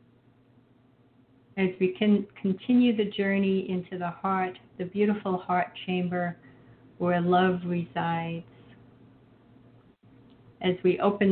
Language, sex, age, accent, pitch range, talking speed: English, female, 50-69, American, 125-185 Hz, 100 wpm